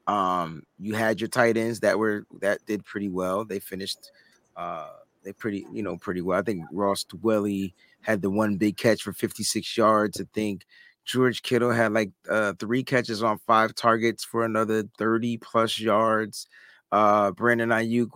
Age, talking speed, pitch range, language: 30-49, 175 wpm, 110-140 Hz, English